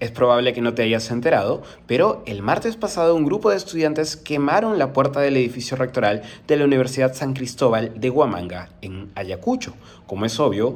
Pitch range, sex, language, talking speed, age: 105-140 Hz, male, Spanish, 185 wpm, 30-49